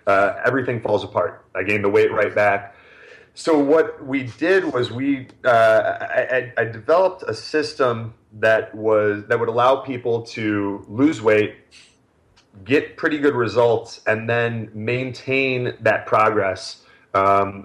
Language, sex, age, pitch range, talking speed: English, male, 30-49, 105-130 Hz, 140 wpm